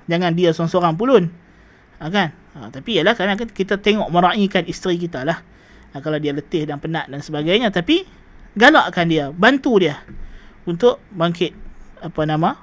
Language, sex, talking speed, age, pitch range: Malay, male, 155 wpm, 20-39, 180-230 Hz